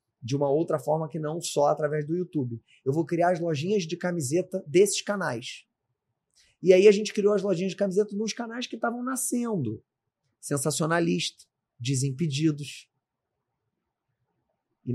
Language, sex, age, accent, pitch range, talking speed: Portuguese, male, 30-49, Brazilian, 125-170 Hz, 145 wpm